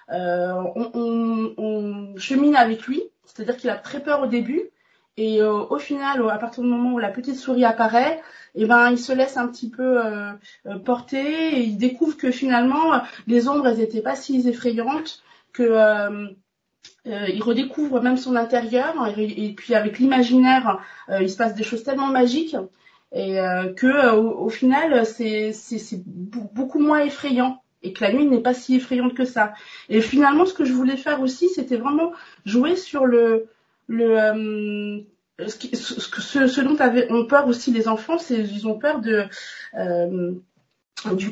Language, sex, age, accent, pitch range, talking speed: French, female, 30-49, French, 215-275 Hz, 180 wpm